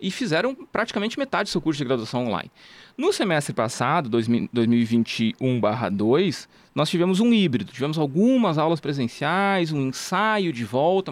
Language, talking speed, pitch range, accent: Portuguese, 140 wpm, 125-180 Hz, Brazilian